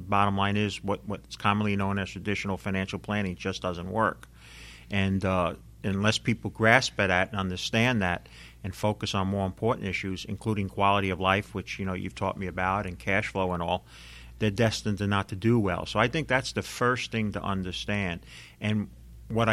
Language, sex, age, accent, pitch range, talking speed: English, male, 50-69, American, 100-120 Hz, 195 wpm